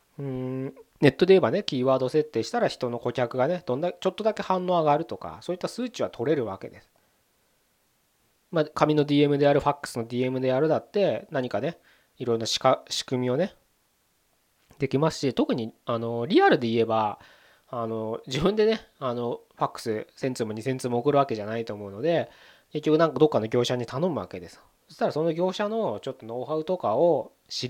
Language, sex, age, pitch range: Japanese, male, 20-39, 115-170 Hz